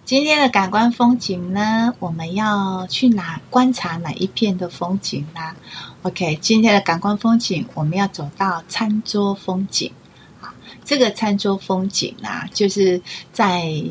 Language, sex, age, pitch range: Chinese, female, 30-49, 175-210 Hz